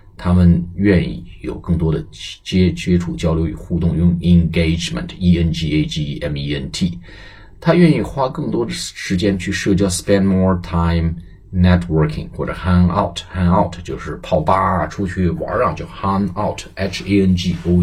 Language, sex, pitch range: Chinese, male, 85-95 Hz